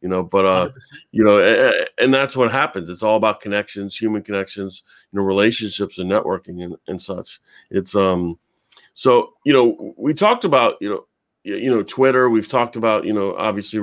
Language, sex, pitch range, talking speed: English, male, 100-120 Hz, 190 wpm